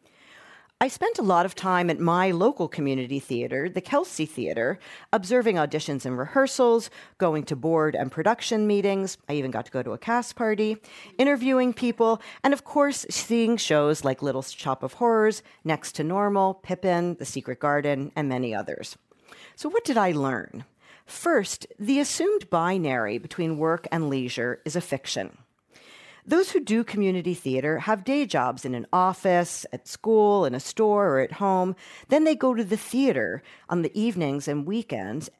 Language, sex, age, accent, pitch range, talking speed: English, female, 40-59, American, 150-225 Hz, 170 wpm